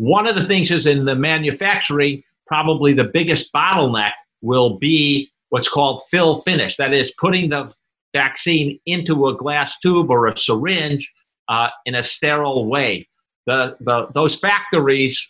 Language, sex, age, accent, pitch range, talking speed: English, male, 50-69, American, 120-155 Hz, 145 wpm